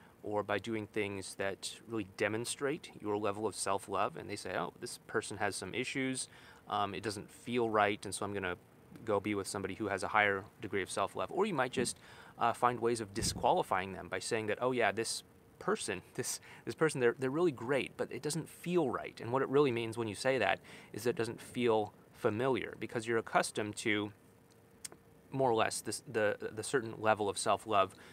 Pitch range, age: 100-125 Hz, 30-49